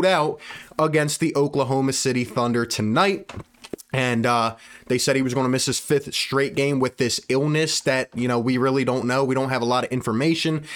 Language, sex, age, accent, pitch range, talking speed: English, male, 20-39, American, 135-180 Hz, 205 wpm